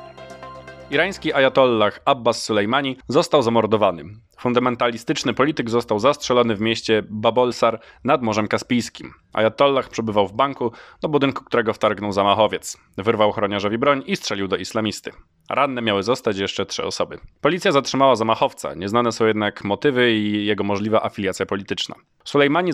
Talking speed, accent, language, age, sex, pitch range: 135 wpm, native, Polish, 20-39, male, 105-130 Hz